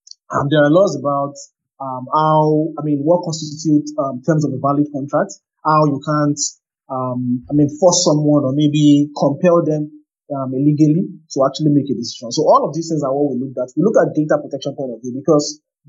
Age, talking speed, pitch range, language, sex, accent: 30-49, 215 wpm, 145-180 Hz, English, male, Nigerian